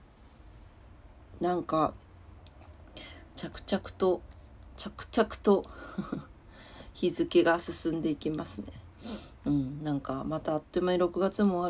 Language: Japanese